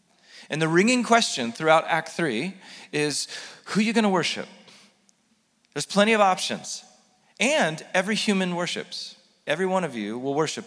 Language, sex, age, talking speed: English, male, 40-59, 155 wpm